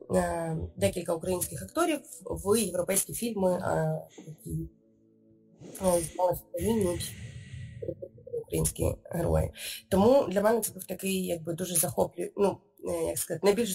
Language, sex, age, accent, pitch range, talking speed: Ukrainian, female, 20-39, native, 170-210 Hz, 105 wpm